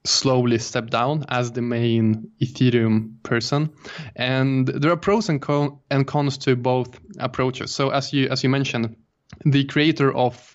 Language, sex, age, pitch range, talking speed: English, male, 20-39, 125-145 Hz, 150 wpm